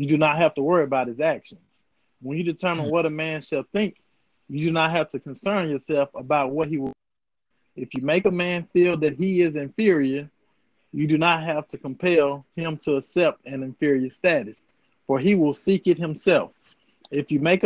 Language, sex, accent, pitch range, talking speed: English, male, American, 145-170 Hz, 200 wpm